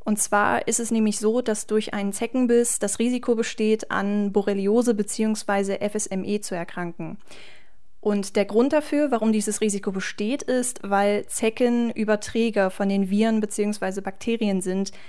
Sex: female